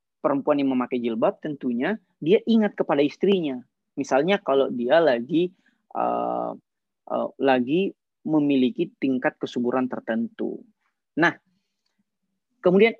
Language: Indonesian